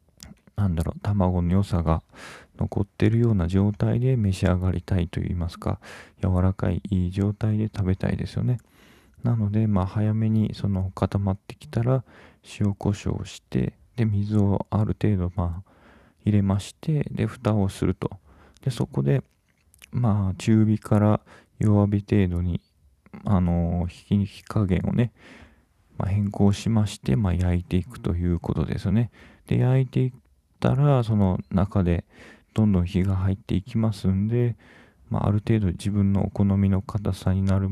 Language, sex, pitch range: Japanese, male, 90-110 Hz